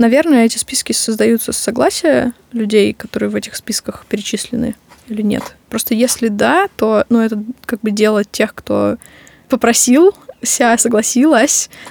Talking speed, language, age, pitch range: 140 wpm, Russian, 20-39, 215-250 Hz